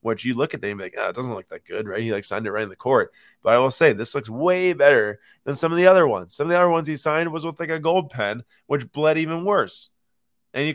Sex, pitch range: male, 95-130 Hz